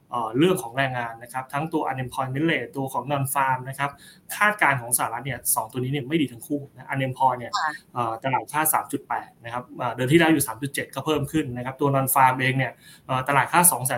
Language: Thai